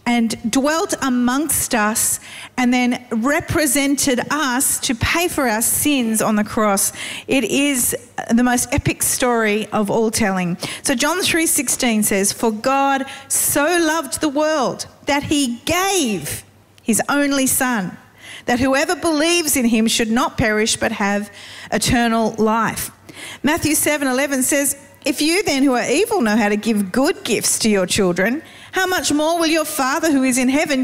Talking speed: 160 wpm